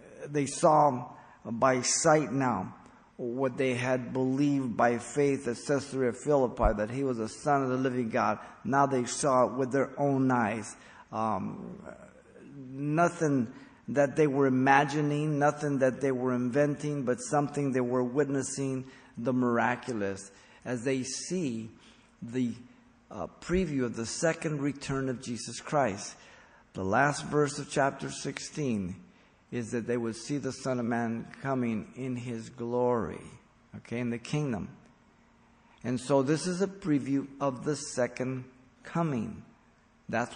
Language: English